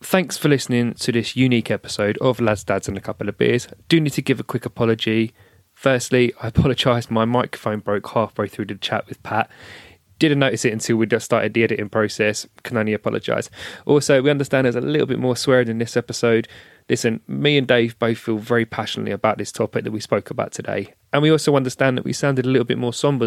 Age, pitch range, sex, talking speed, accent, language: 20-39, 110-135 Hz, male, 225 wpm, British, English